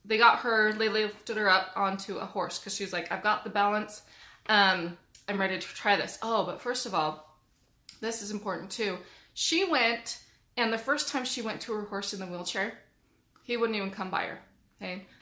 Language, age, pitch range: English, 20-39, 190-235 Hz